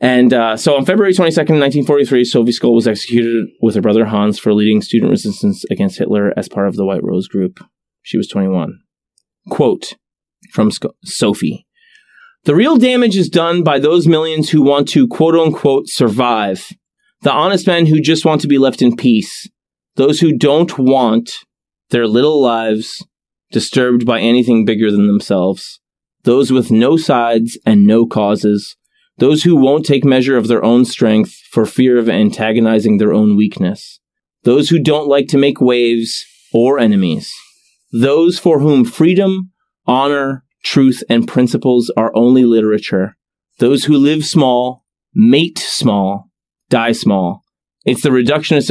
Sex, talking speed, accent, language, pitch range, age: male, 155 wpm, American, English, 110-155 Hz, 30-49